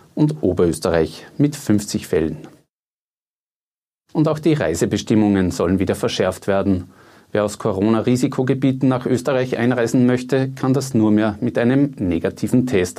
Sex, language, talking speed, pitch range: male, German, 130 wpm, 100-125 Hz